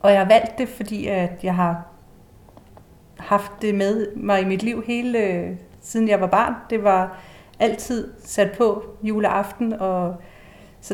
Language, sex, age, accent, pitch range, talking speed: Danish, female, 30-49, native, 165-205 Hz, 155 wpm